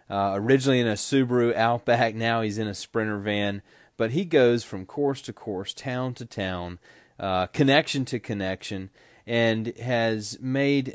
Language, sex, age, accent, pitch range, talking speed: English, male, 30-49, American, 95-115 Hz, 160 wpm